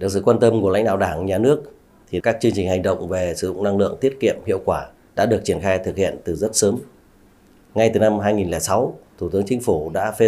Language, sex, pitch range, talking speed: Vietnamese, male, 95-110 Hz, 255 wpm